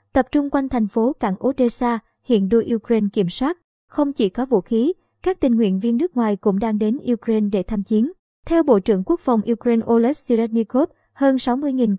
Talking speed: 200 wpm